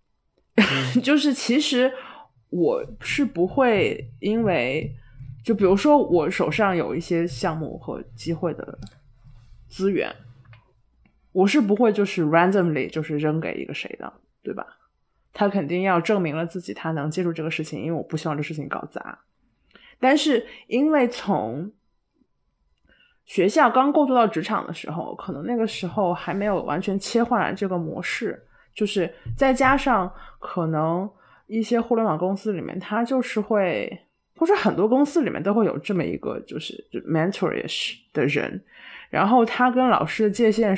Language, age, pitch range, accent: Chinese, 20-39, 160-235 Hz, native